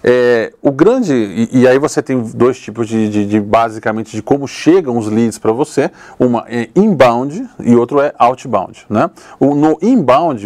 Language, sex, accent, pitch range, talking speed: Portuguese, male, Brazilian, 115-140 Hz, 185 wpm